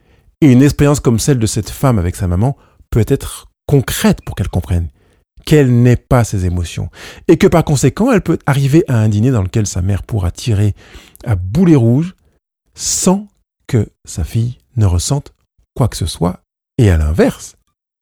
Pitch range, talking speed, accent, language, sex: 105-145 Hz, 175 wpm, French, French, male